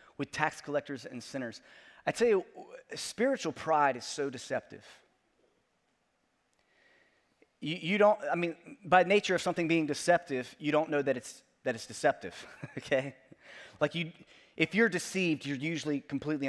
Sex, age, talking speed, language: male, 30-49, 150 wpm, English